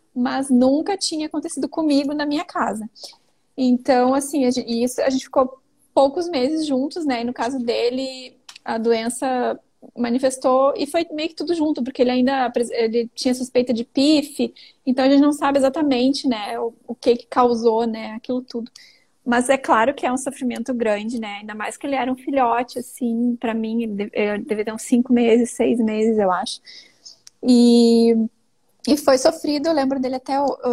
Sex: female